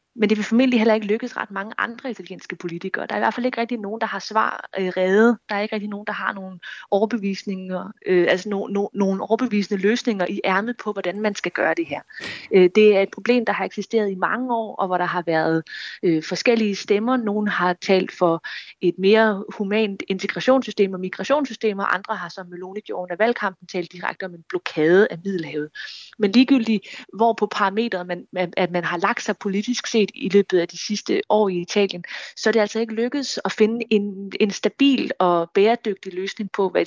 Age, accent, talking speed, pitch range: 20-39, native, 215 wpm, 185-220 Hz